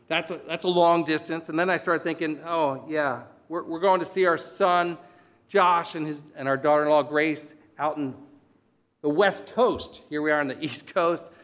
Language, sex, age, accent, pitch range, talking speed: English, male, 50-69, American, 145-190 Hz, 205 wpm